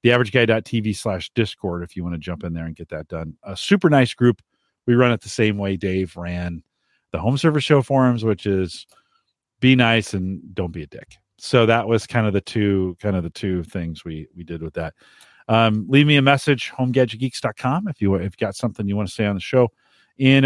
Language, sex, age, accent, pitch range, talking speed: English, male, 40-59, American, 100-130 Hz, 225 wpm